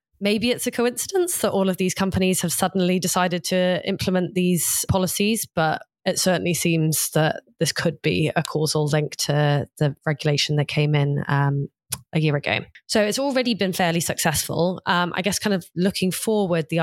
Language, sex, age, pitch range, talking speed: English, female, 20-39, 150-175 Hz, 180 wpm